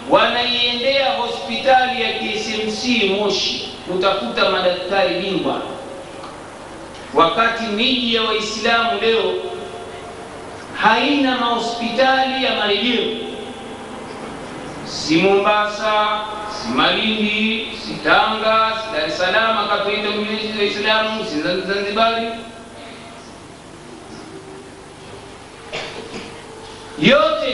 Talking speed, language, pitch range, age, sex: 70 wpm, Swahili, 210-275 Hz, 60-79, male